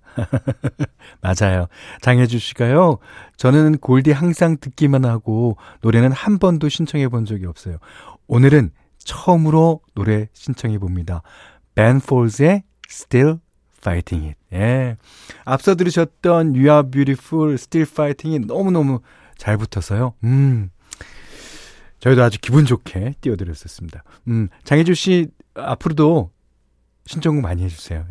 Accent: native